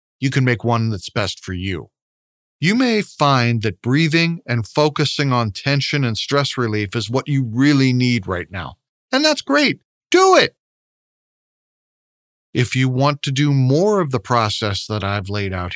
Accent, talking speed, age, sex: American, 170 wpm, 50-69, male